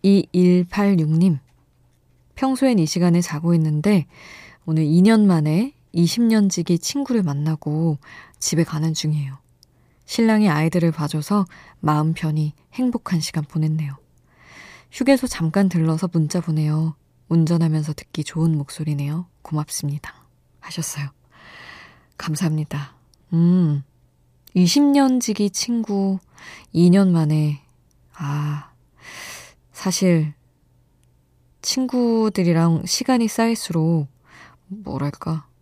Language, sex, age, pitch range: Korean, female, 20-39, 145-185 Hz